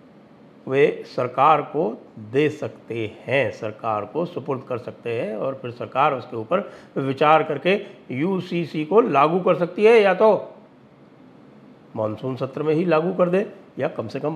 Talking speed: 160 wpm